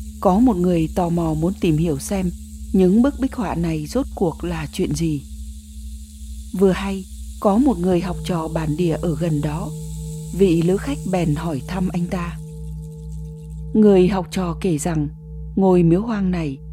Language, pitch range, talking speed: Vietnamese, 150-195 Hz, 170 wpm